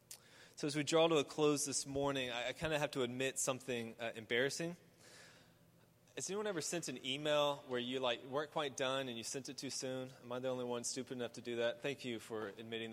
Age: 20-39